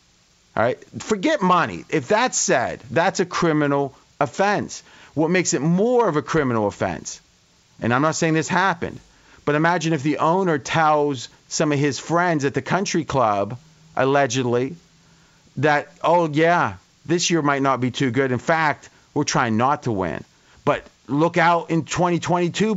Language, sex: English, male